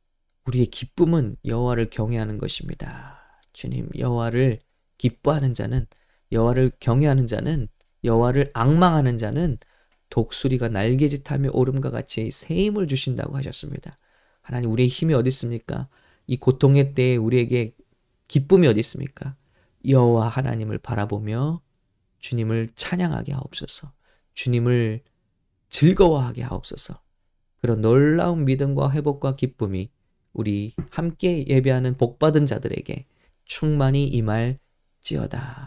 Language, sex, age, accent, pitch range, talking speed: English, male, 20-39, Korean, 110-140 Hz, 95 wpm